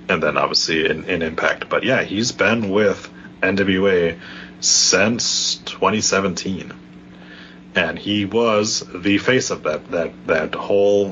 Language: English